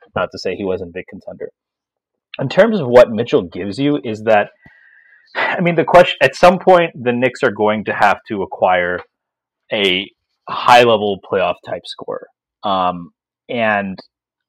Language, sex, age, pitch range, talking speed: English, male, 30-49, 105-145 Hz, 165 wpm